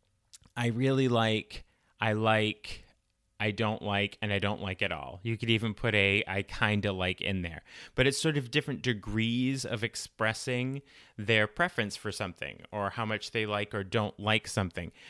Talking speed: 185 wpm